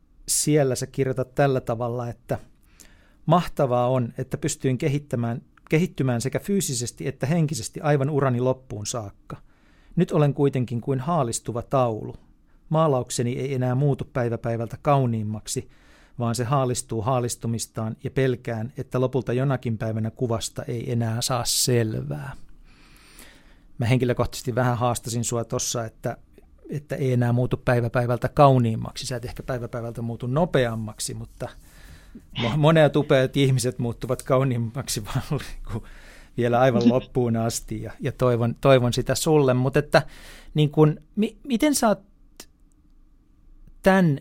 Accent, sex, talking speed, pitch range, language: native, male, 120 wpm, 120-140 Hz, Finnish